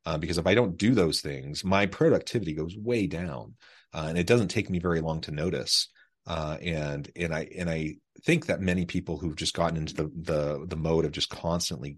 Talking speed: 220 wpm